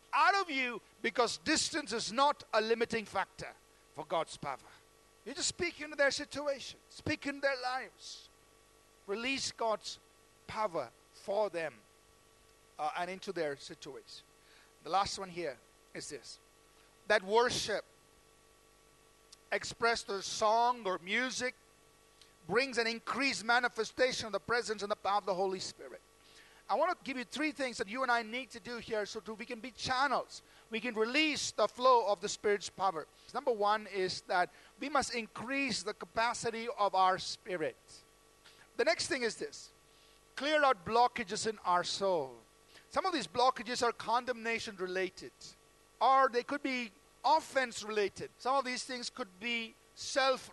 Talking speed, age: 160 wpm, 50-69